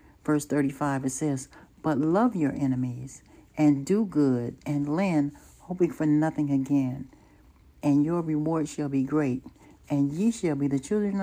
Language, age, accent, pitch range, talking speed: English, 60-79, American, 145-175 Hz, 160 wpm